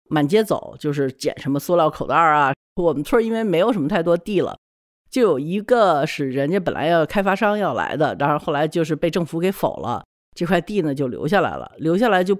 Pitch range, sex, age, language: 155-230 Hz, female, 50-69, Chinese